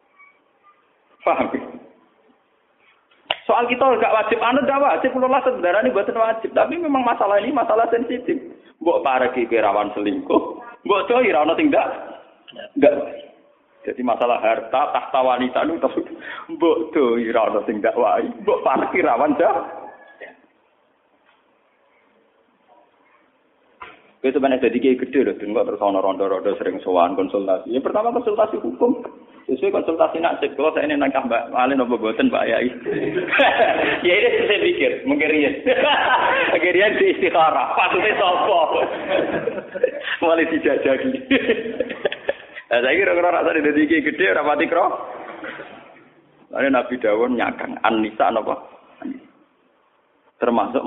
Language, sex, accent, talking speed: Indonesian, male, native, 120 wpm